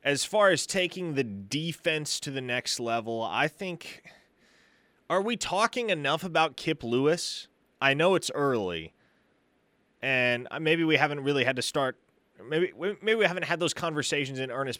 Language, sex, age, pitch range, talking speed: English, male, 20-39, 115-150 Hz, 160 wpm